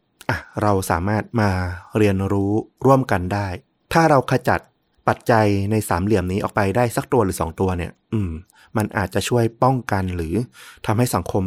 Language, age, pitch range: Thai, 30-49, 95-125 Hz